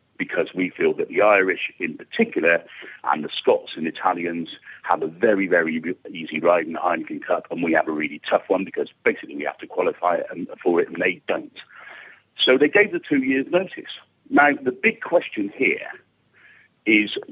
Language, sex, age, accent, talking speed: English, male, 50-69, British, 185 wpm